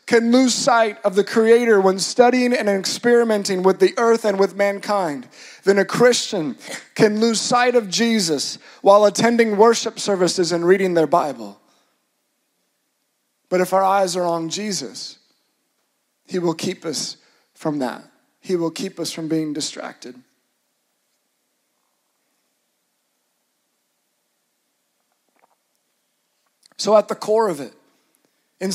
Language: English